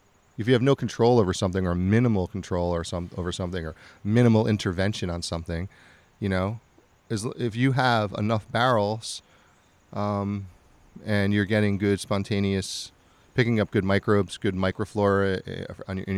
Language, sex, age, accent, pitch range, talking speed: English, male, 30-49, American, 95-115 Hz, 150 wpm